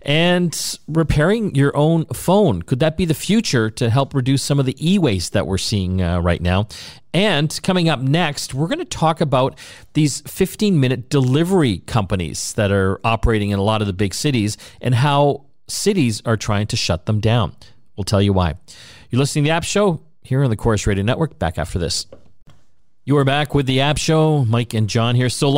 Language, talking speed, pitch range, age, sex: English, 200 wpm, 105-140 Hz, 40-59, male